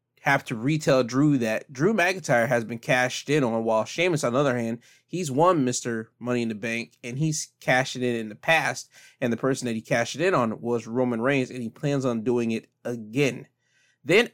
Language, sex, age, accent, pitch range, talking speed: English, male, 20-39, American, 120-140 Hz, 215 wpm